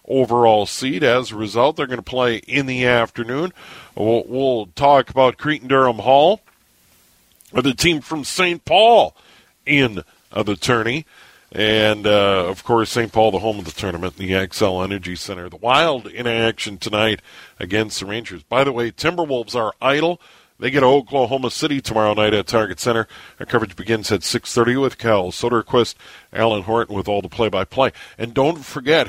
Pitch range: 105-135 Hz